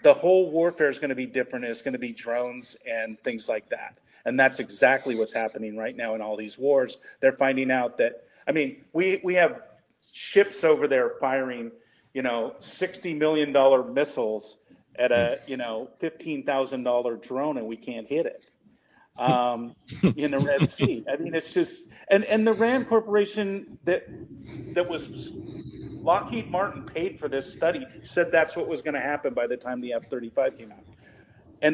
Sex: male